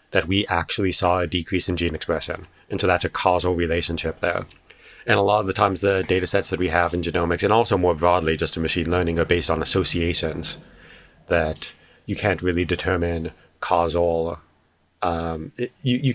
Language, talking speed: English, 195 wpm